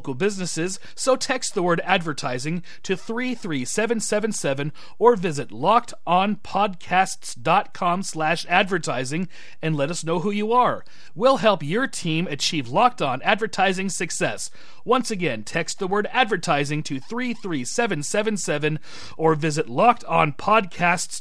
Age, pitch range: 30-49, 145-190 Hz